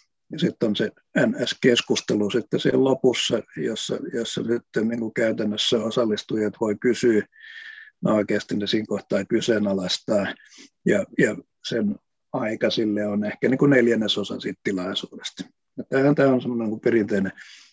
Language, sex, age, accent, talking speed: Finnish, male, 50-69, native, 120 wpm